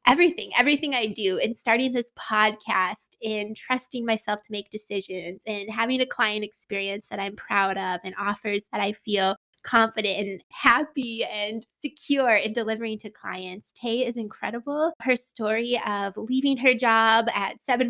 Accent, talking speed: American, 160 wpm